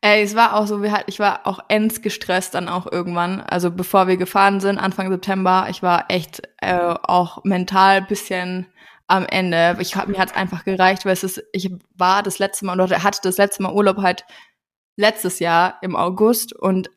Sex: female